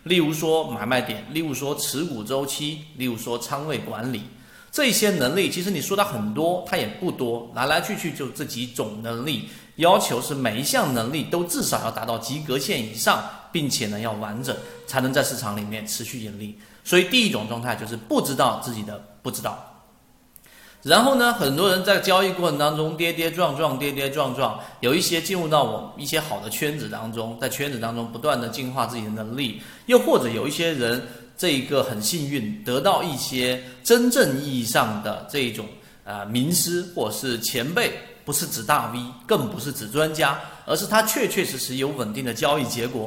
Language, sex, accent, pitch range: Chinese, male, native, 115-165 Hz